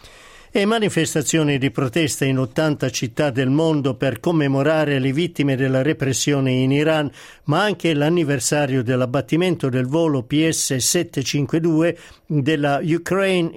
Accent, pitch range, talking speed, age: native, 135-165 Hz, 115 wpm, 50-69